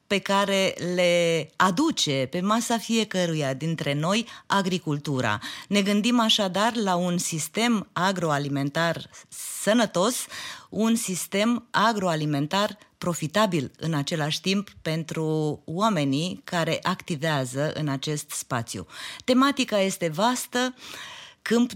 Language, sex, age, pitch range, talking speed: Romanian, female, 30-49, 155-220 Hz, 100 wpm